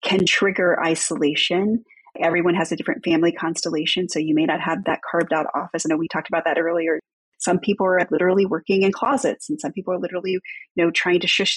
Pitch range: 165-190 Hz